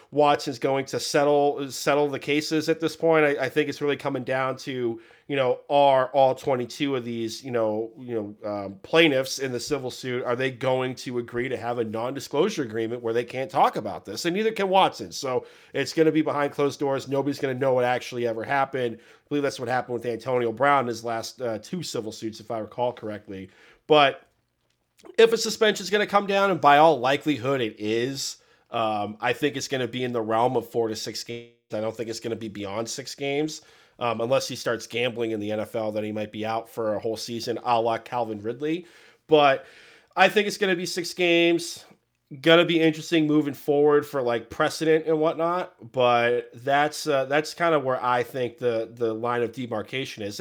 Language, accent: English, American